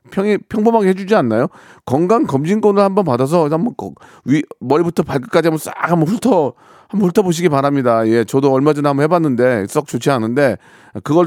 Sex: male